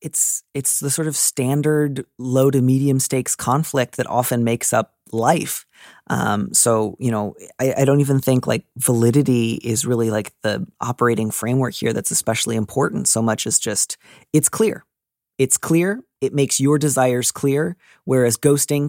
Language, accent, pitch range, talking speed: English, American, 115-140 Hz, 165 wpm